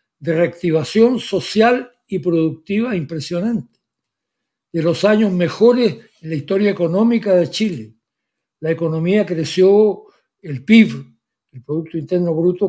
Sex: male